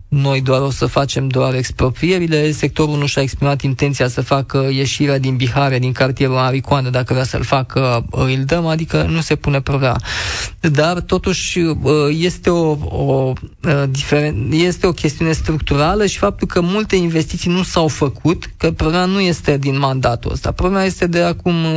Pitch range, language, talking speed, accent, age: 130-160 Hz, Romanian, 165 wpm, native, 20-39